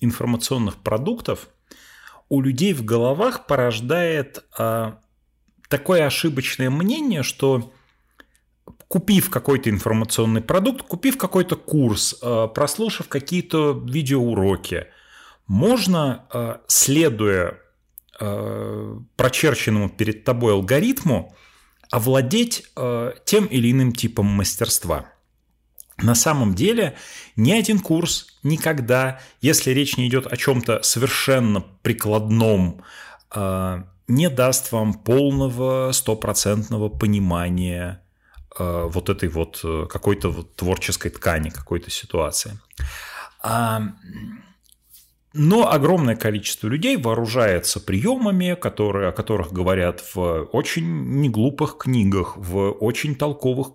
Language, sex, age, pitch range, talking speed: Russian, male, 30-49, 100-135 Hz, 85 wpm